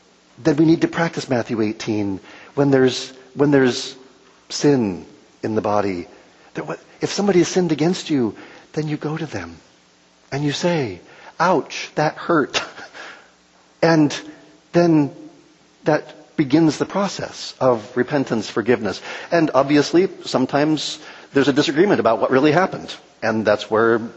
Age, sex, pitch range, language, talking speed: 50-69, male, 110-150 Hz, English, 135 wpm